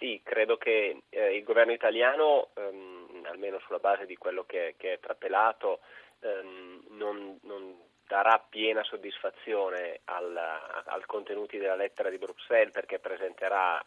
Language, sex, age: Italian, male, 30-49